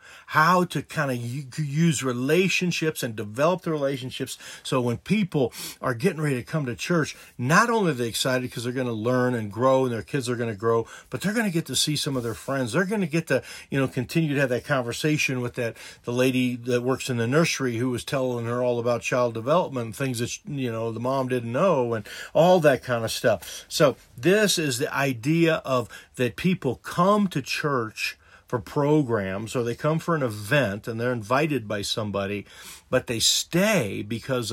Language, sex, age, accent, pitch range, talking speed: English, male, 50-69, American, 120-155 Hz, 210 wpm